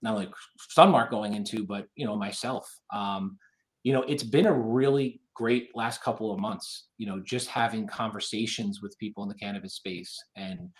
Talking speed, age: 185 wpm, 30-49